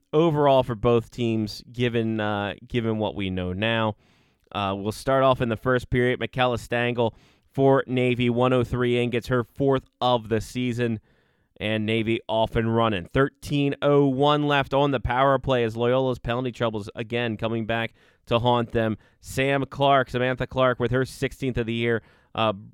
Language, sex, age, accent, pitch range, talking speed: English, male, 20-39, American, 110-130 Hz, 165 wpm